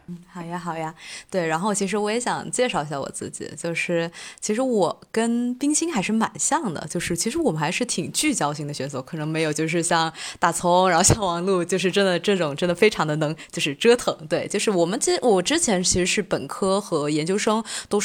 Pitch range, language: 160-205 Hz, Chinese